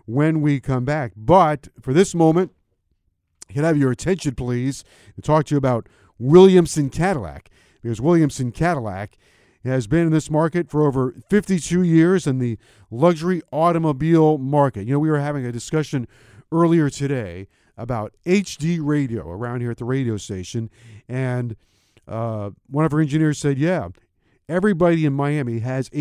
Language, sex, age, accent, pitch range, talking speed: English, male, 50-69, American, 120-160 Hz, 155 wpm